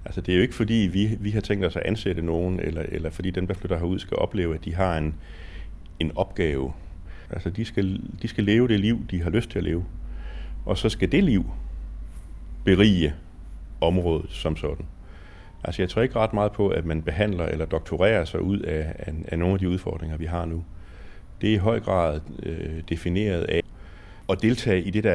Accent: native